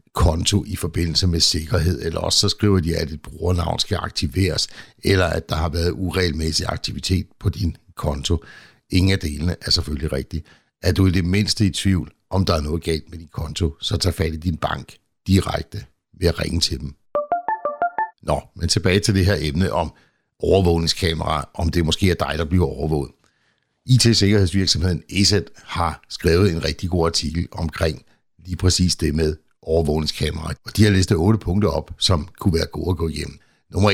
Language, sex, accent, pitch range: Danish, male, native, 80-95 Hz